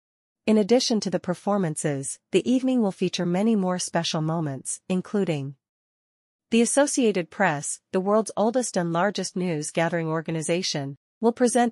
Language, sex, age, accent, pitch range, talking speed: English, female, 40-59, American, 165-205 Hz, 140 wpm